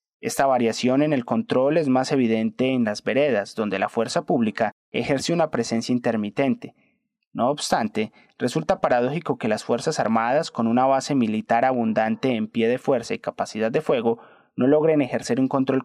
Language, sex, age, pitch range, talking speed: Spanish, male, 30-49, 115-140 Hz, 170 wpm